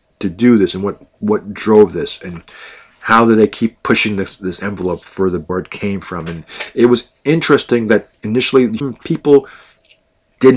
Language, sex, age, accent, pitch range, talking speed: English, male, 40-59, American, 95-115 Hz, 170 wpm